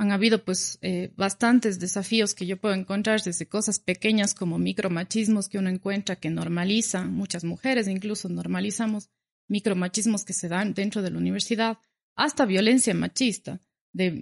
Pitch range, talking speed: 190-230 Hz, 150 wpm